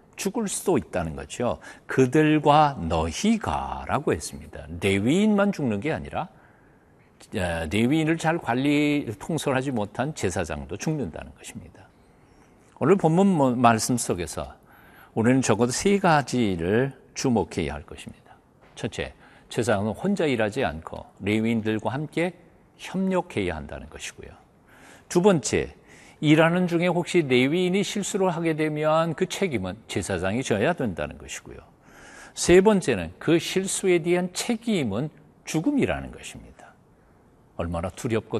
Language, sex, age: Korean, male, 50-69